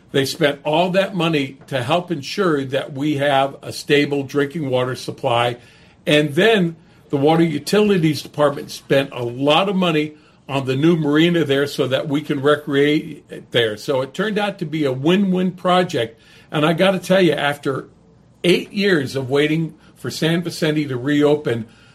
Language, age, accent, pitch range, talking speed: English, 50-69, American, 140-185 Hz, 170 wpm